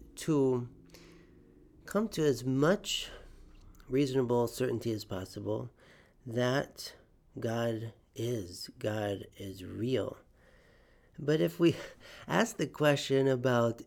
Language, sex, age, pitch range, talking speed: English, male, 40-59, 105-130 Hz, 95 wpm